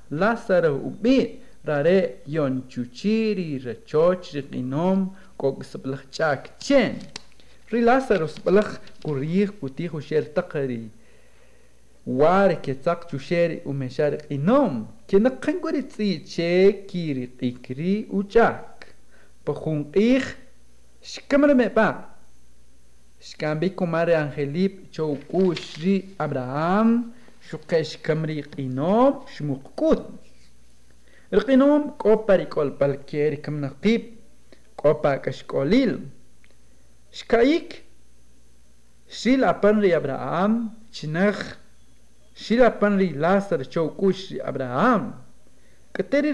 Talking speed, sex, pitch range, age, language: 70 wpm, male, 140-220 Hz, 50-69, Spanish